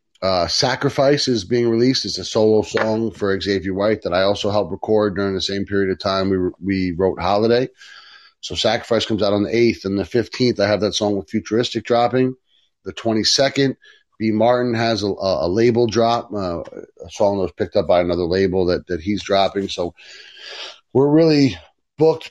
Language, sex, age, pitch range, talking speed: English, male, 30-49, 95-115 Hz, 195 wpm